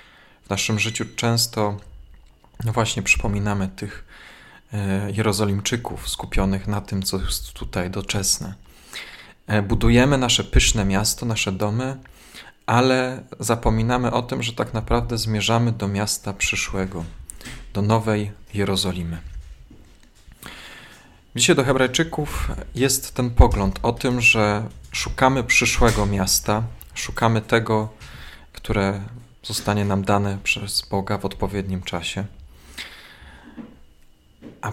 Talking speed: 100 wpm